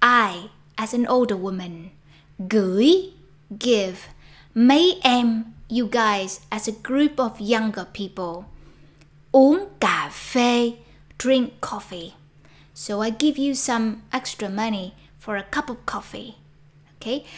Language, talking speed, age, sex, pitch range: Vietnamese, 115 wpm, 20-39, female, 185-255 Hz